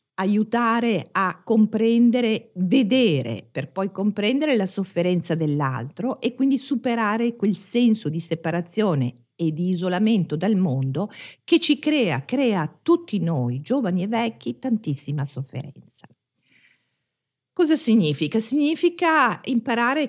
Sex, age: female, 50-69